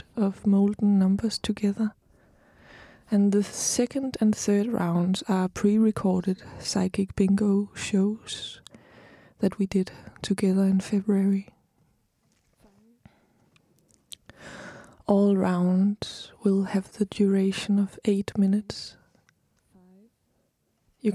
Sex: female